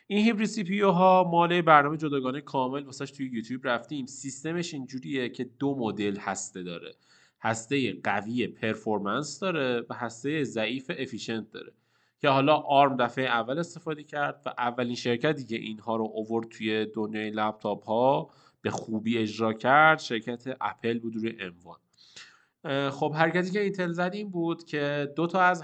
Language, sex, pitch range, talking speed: Persian, male, 110-145 Hz, 150 wpm